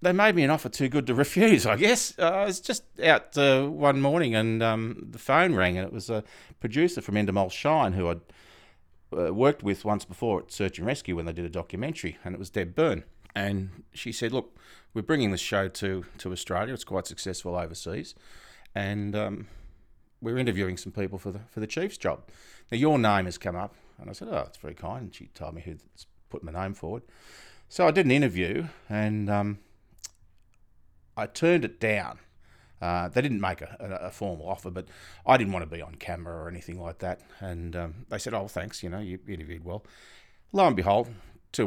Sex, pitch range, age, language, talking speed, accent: male, 90-115 Hz, 30-49, English, 210 wpm, Australian